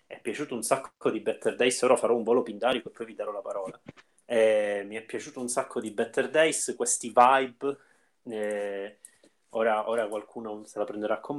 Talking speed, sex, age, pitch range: 195 wpm, male, 30-49, 105-135 Hz